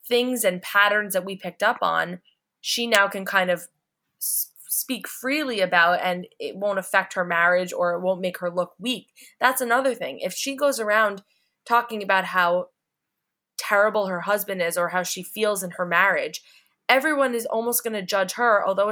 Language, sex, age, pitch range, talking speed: English, female, 20-39, 180-230 Hz, 185 wpm